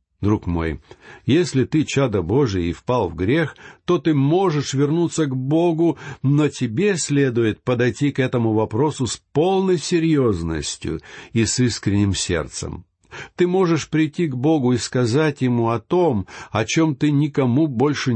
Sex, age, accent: male, 60-79, native